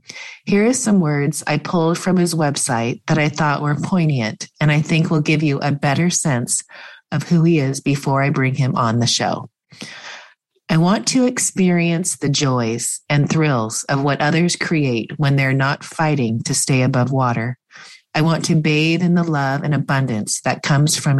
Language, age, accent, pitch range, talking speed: English, 30-49, American, 140-170 Hz, 185 wpm